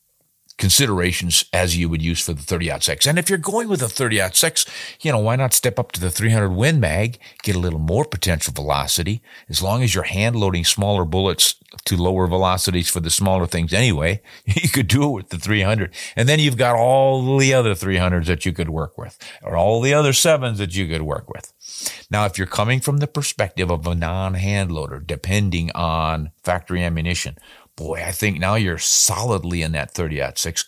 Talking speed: 210 wpm